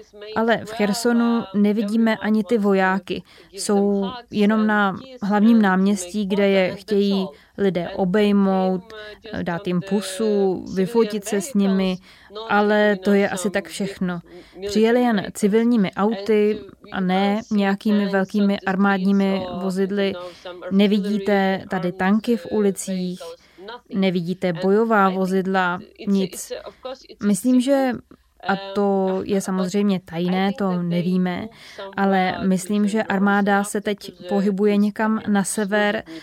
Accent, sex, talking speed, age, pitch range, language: native, female, 115 wpm, 20-39, 185-210 Hz, Czech